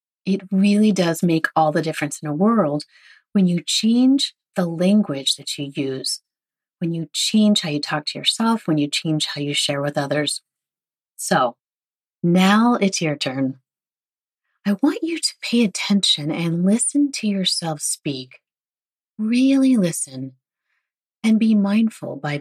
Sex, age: female, 30-49